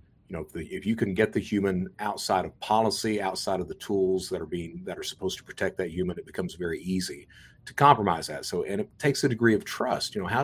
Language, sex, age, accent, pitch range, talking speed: English, male, 50-69, American, 90-100 Hz, 260 wpm